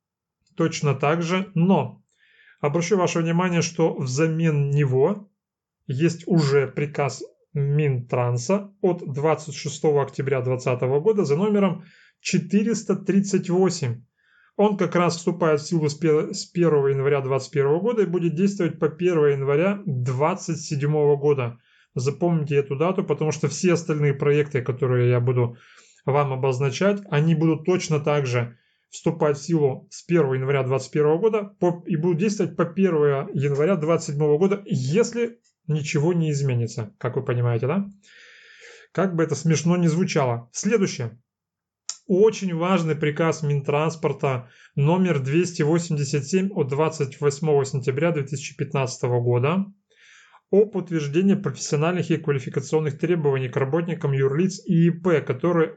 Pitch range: 140-180 Hz